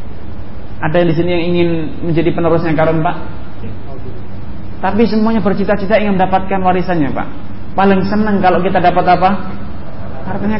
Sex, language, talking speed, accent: male, English, 135 wpm, Indonesian